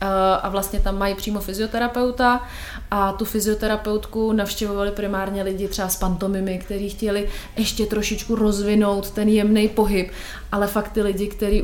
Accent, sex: native, female